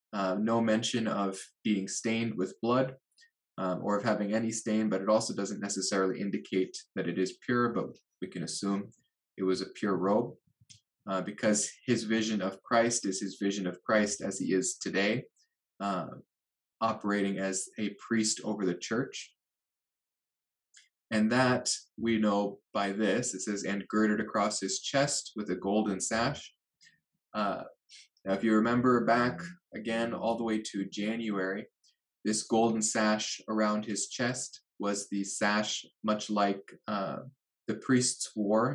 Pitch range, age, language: 100-115 Hz, 20-39, English